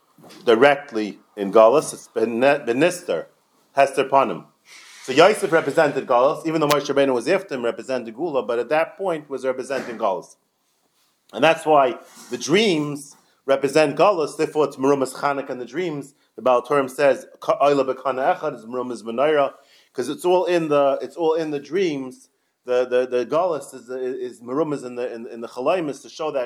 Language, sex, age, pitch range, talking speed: English, male, 30-49, 125-155 Hz, 165 wpm